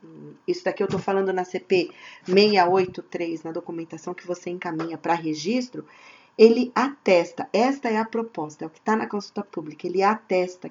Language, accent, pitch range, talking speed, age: Portuguese, Brazilian, 175-220 Hz, 170 wpm, 40-59